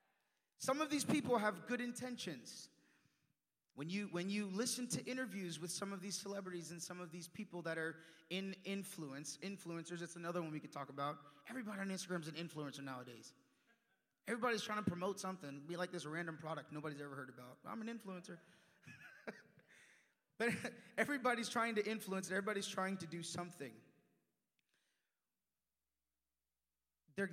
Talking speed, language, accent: 160 wpm, English, American